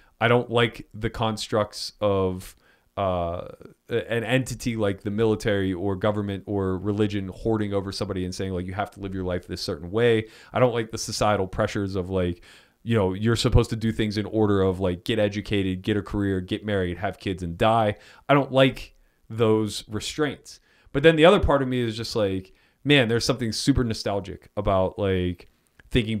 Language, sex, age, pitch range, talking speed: English, male, 30-49, 95-115 Hz, 190 wpm